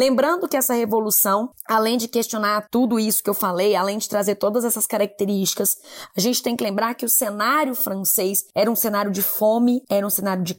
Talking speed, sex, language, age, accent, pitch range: 205 wpm, female, Portuguese, 20-39, Brazilian, 205-255 Hz